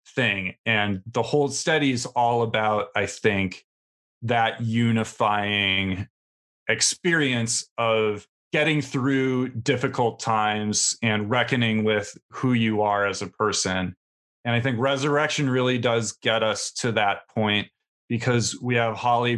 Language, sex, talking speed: English, male, 130 wpm